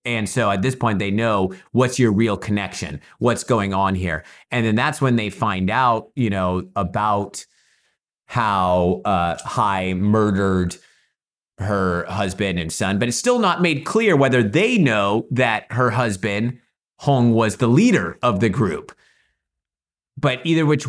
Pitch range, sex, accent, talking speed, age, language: 95-120 Hz, male, American, 160 wpm, 30-49, English